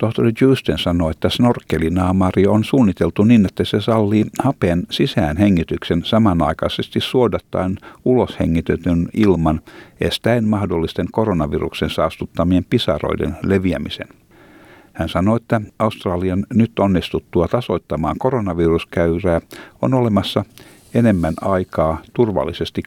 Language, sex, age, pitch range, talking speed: Finnish, male, 60-79, 85-110 Hz, 95 wpm